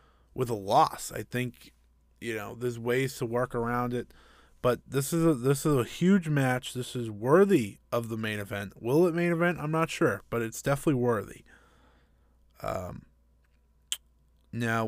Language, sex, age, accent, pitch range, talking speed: English, male, 20-39, American, 105-130 Hz, 170 wpm